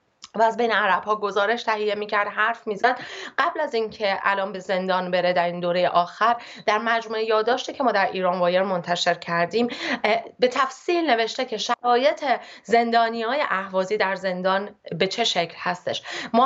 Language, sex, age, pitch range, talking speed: Persian, female, 30-49, 190-240 Hz, 170 wpm